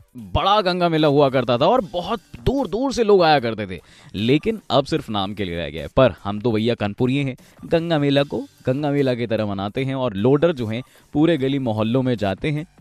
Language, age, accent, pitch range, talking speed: Hindi, 20-39, native, 125-170 Hz, 220 wpm